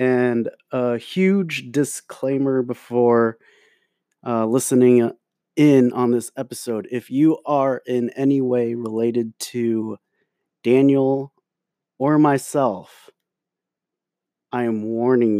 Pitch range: 110-140 Hz